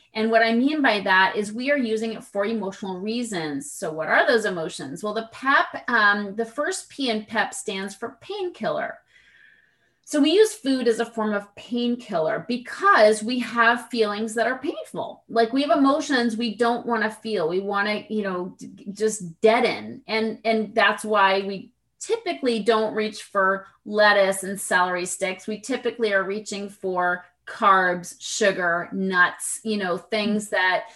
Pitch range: 190-235 Hz